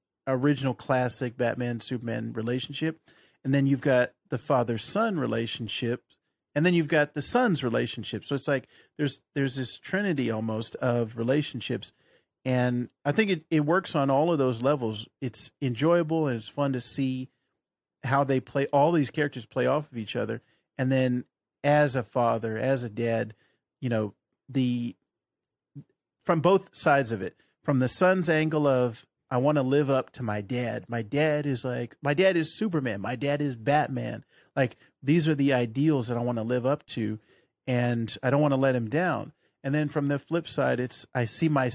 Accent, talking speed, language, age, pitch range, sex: American, 185 wpm, English, 40-59, 120-150 Hz, male